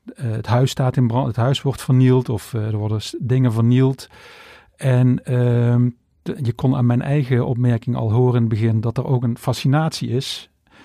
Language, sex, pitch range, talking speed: Dutch, male, 120-140 Hz, 185 wpm